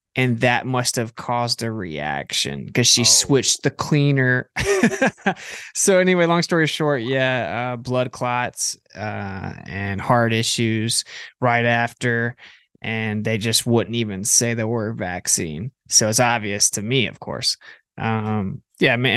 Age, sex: 20-39, male